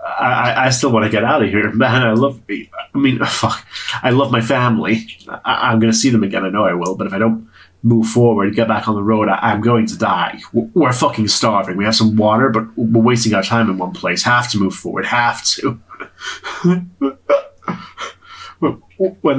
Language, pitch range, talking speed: English, 95-115 Hz, 205 wpm